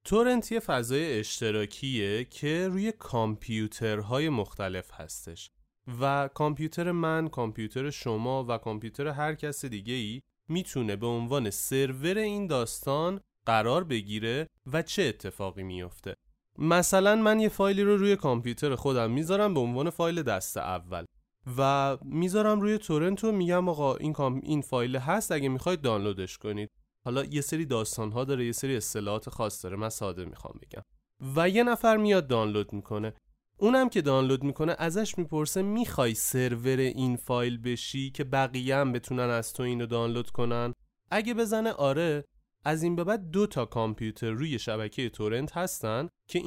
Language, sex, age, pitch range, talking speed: Persian, male, 30-49, 115-170 Hz, 145 wpm